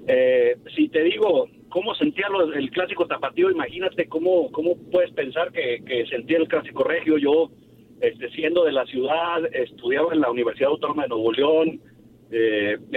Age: 50-69